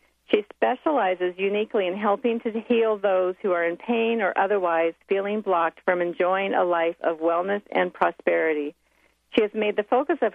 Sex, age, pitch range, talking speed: female, 50-69, 175-230 Hz, 175 wpm